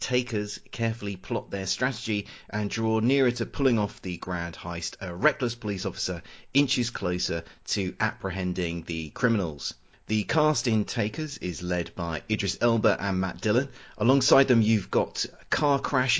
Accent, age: British, 30-49